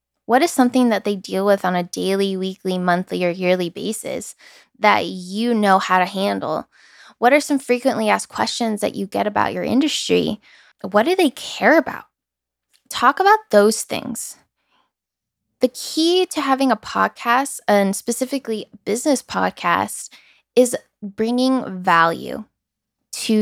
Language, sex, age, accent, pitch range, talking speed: English, female, 10-29, American, 195-250 Hz, 145 wpm